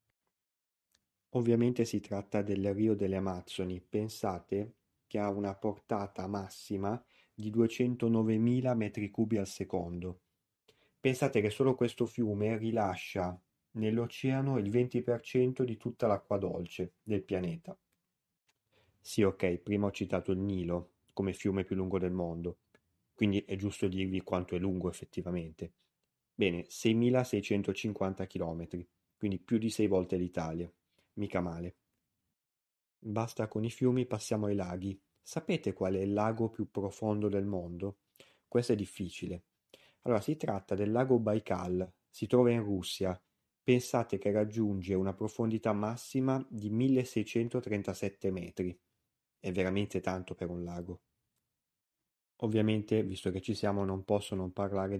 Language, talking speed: Italian, 130 wpm